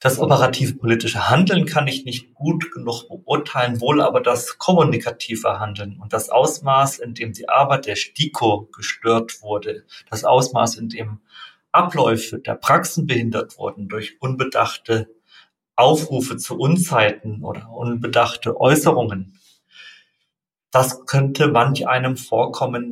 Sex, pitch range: male, 115-140 Hz